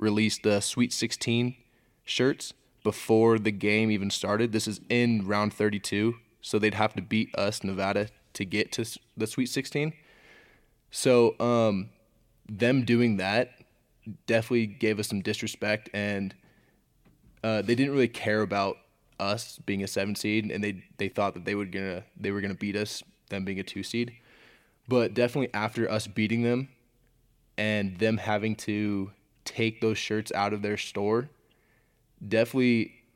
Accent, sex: American, male